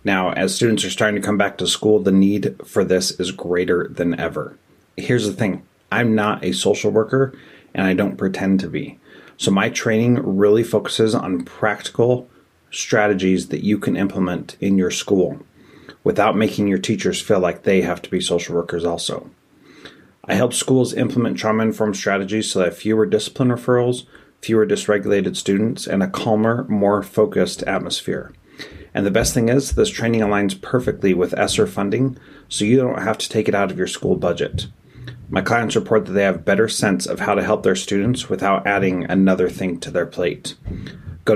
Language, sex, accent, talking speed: English, male, American, 185 wpm